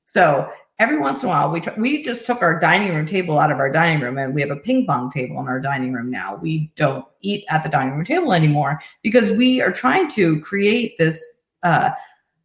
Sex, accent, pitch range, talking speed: female, American, 155-210 Hz, 235 wpm